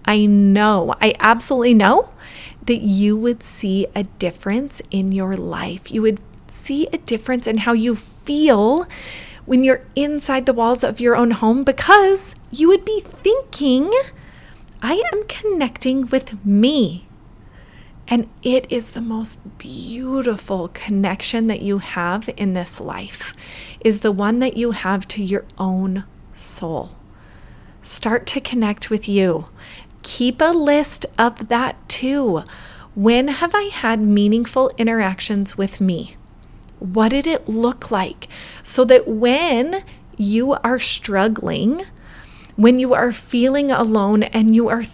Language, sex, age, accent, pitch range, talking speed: English, female, 30-49, American, 205-265 Hz, 140 wpm